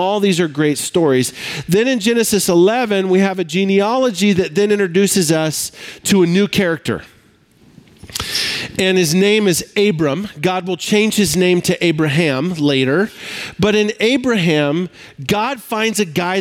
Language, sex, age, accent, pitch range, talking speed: English, male, 40-59, American, 160-210 Hz, 150 wpm